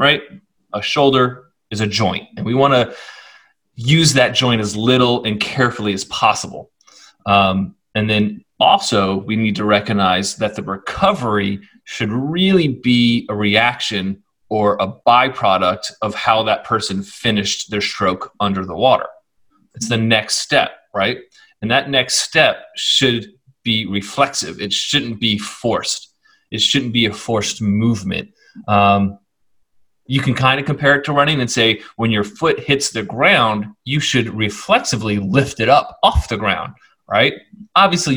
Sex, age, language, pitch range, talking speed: male, 30-49, English, 105-140 Hz, 155 wpm